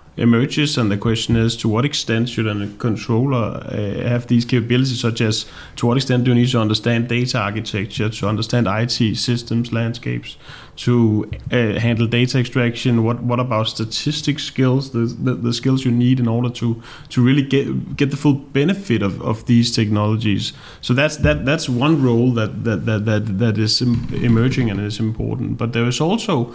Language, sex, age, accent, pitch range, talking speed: Danish, male, 30-49, native, 110-130 Hz, 185 wpm